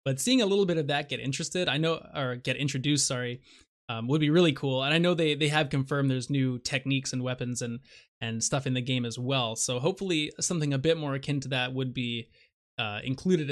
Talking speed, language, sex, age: 235 wpm, English, male, 20-39